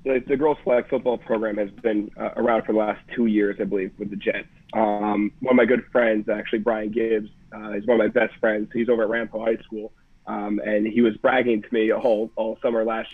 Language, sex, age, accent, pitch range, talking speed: English, male, 30-49, American, 110-125 Hz, 245 wpm